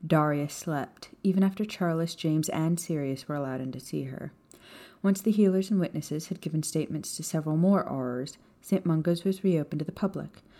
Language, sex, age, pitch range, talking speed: English, female, 30-49, 155-195 Hz, 185 wpm